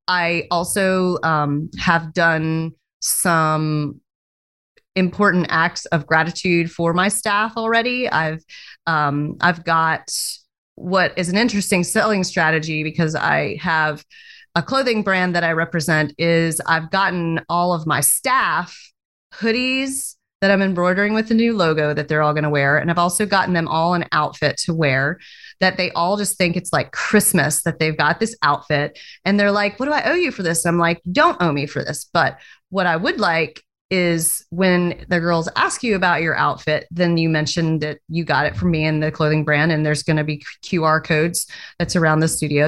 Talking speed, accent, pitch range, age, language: 185 wpm, American, 155-190 Hz, 30-49, English